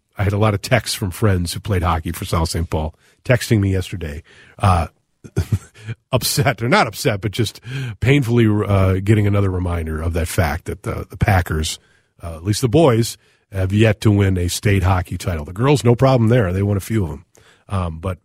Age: 40-59